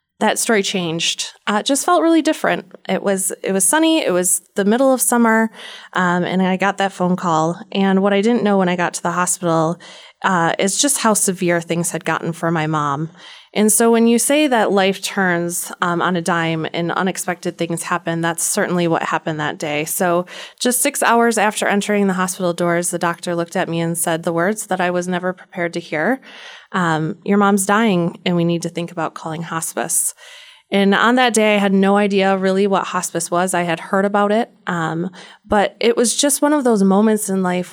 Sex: female